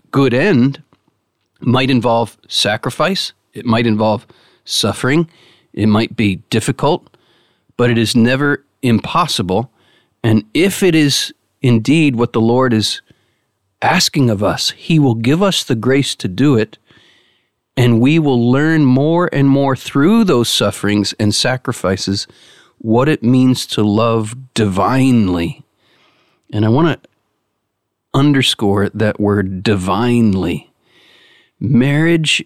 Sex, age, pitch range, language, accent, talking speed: male, 40-59, 110-145 Hz, English, American, 120 wpm